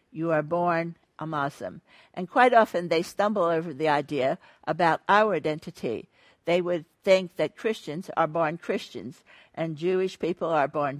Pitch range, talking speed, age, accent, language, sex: 155-180 Hz, 160 wpm, 60-79, American, English, female